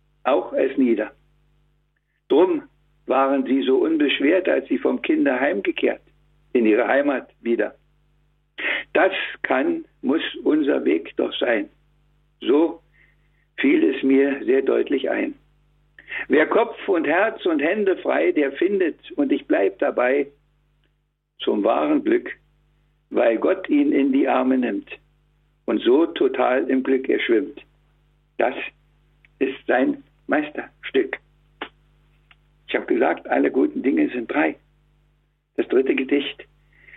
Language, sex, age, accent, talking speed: German, male, 60-79, German, 120 wpm